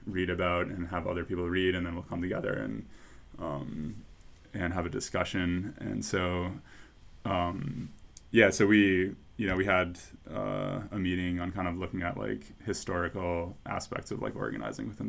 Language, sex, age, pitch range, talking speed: English, male, 20-39, 90-105 Hz, 170 wpm